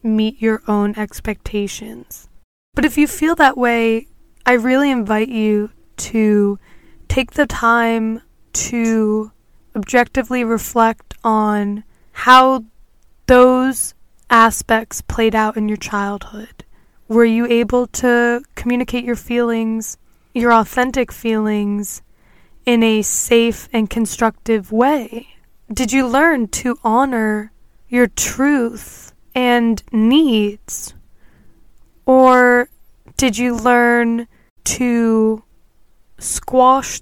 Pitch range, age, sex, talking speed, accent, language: 215-250 Hz, 10-29, female, 100 wpm, American, English